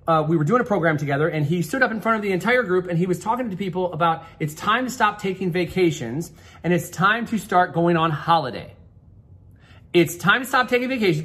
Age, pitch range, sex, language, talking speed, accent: 30-49, 170-230 Hz, male, English, 235 wpm, American